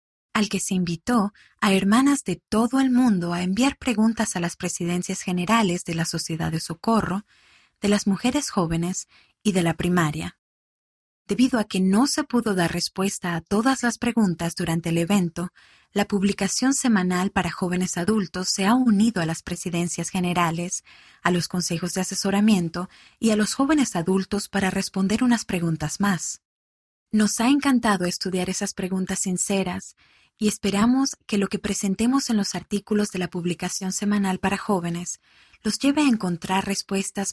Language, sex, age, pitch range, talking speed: Spanish, female, 20-39, 180-215 Hz, 160 wpm